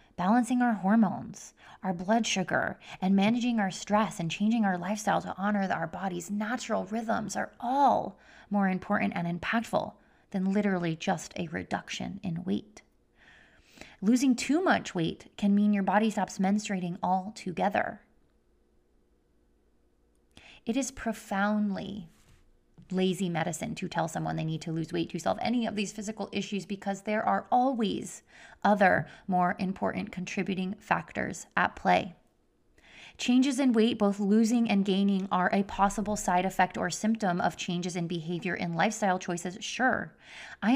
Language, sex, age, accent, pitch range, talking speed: English, female, 20-39, American, 180-220 Hz, 145 wpm